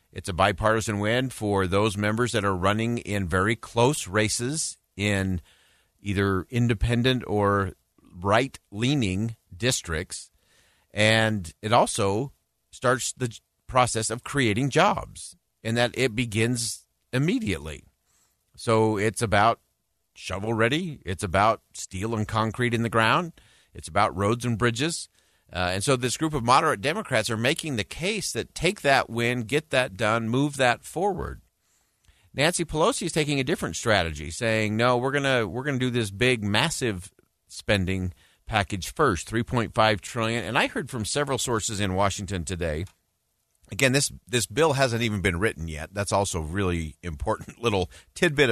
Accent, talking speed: American, 150 wpm